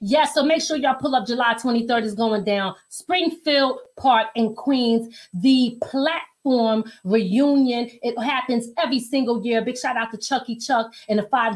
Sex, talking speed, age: female, 170 wpm, 30-49